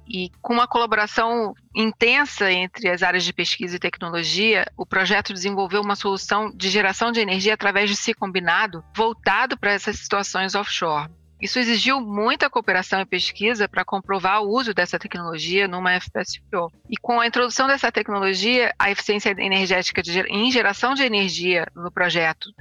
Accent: Brazilian